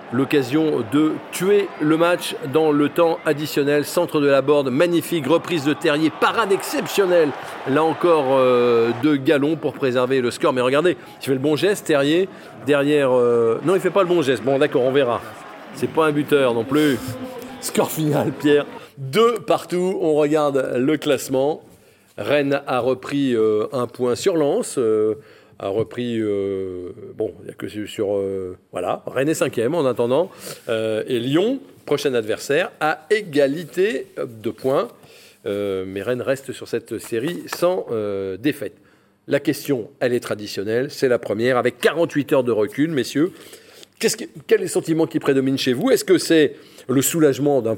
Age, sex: 40-59, male